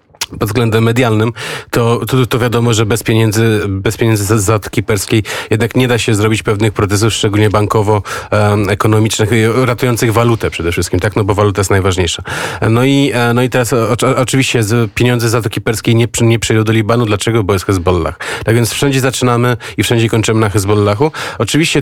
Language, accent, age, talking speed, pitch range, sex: Polish, native, 30-49, 195 wpm, 105-120 Hz, male